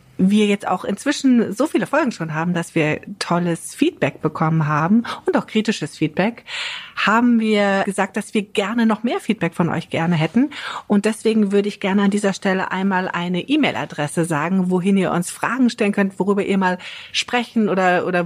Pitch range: 175-220 Hz